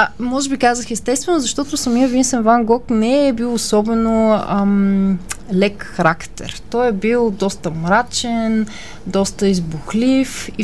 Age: 20-39